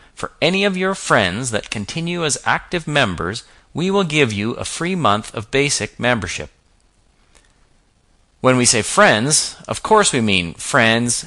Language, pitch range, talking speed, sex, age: English, 95-140 Hz, 155 wpm, male, 40-59